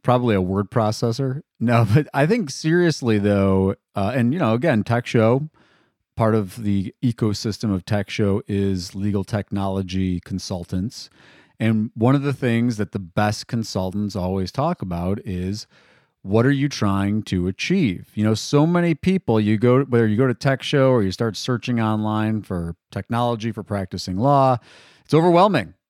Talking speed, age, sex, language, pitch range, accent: 165 wpm, 40-59, male, English, 100-140 Hz, American